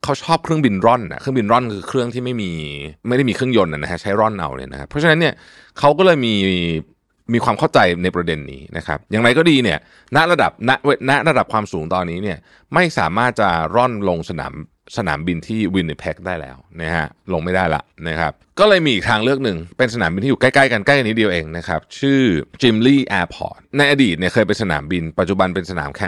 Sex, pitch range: male, 85-130 Hz